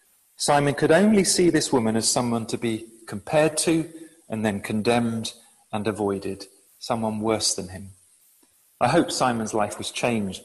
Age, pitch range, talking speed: 40-59, 110-155 Hz, 155 wpm